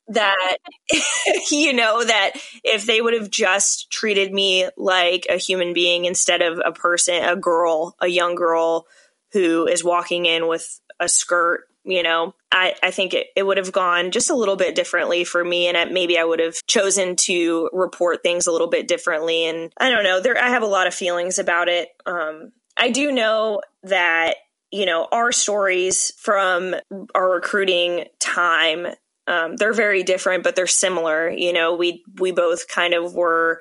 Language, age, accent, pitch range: English, 20-39, American, 175-195 Hz